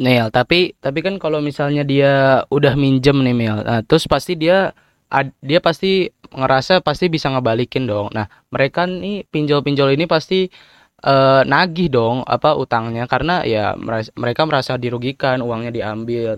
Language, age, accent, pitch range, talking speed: Indonesian, 20-39, native, 125-145 Hz, 145 wpm